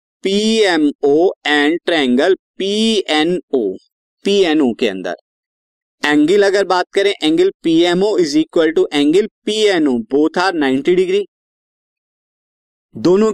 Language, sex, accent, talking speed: Hindi, male, native, 105 wpm